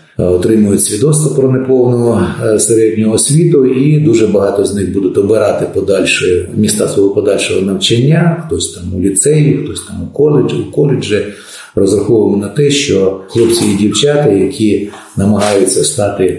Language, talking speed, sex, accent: Ukrainian, 140 wpm, male, native